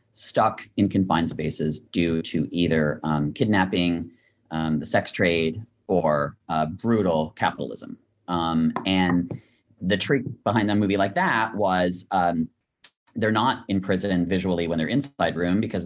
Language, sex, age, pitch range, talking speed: English, male, 30-49, 85-105 Hz, 145 wpm